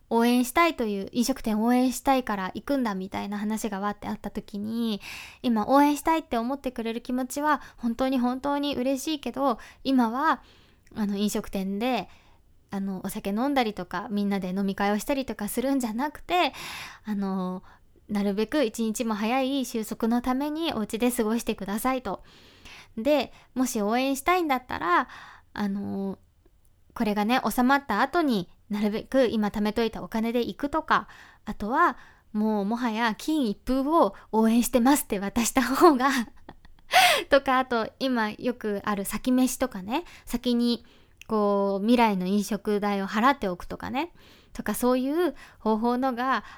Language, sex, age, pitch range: Japanese, female, 20-39, 210-260 Hz